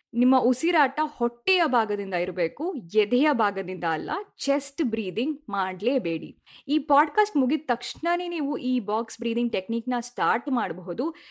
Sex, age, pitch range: female, 20-39, 215-295 Hz